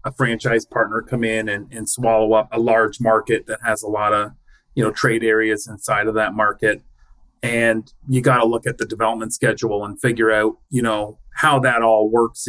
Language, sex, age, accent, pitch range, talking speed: English, male, 30-49, American, 110-125 Hz, 205 wpm